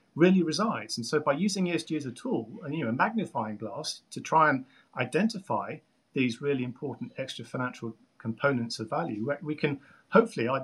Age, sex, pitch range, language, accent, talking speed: 40-59, male, 120-175 Hz, English, British, 175 wpm